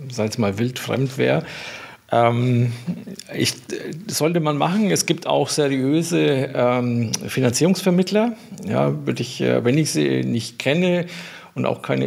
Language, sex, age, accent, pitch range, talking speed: German, male, 50-69, German, 120-150 Hz, 135 wpm